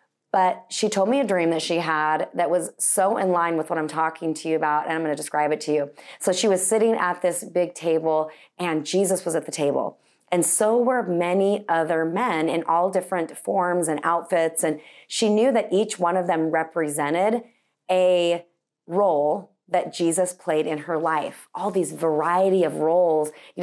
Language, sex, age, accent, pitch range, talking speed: English, female, 30-49, American, 160-190 Hz, 200 wpm